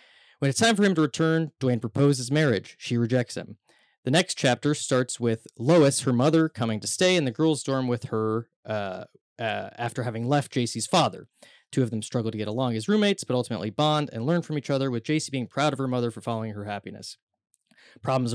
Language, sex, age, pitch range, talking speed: English, male, 20-39, 115-145 Hz, 215 wpm